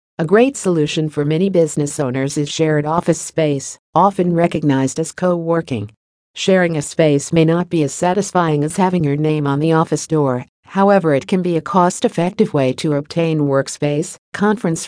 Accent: American